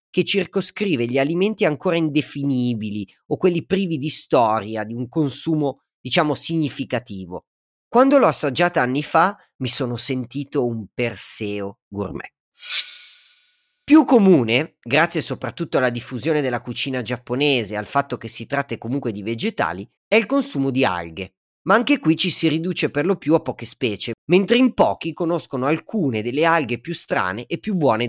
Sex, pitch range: male, 120-175 Hz